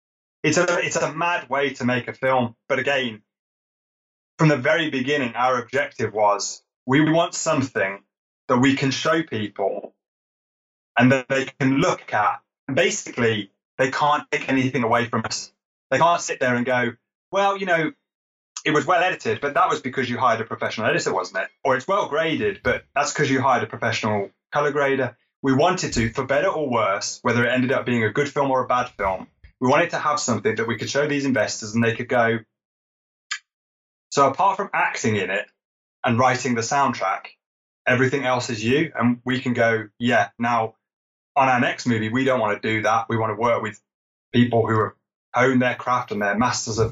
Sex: male